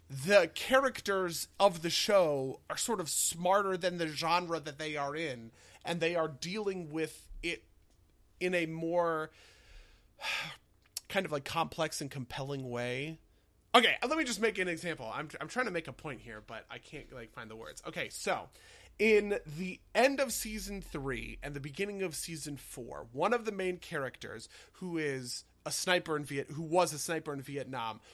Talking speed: 180 wpm